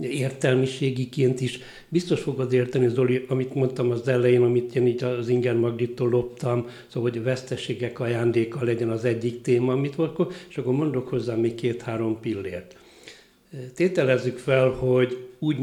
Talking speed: 150 wpm